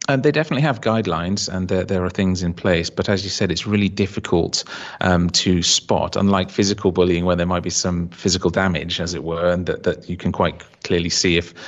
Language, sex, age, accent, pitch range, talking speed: English, male, 30-49, British, 85-95 Hz, 225 wpm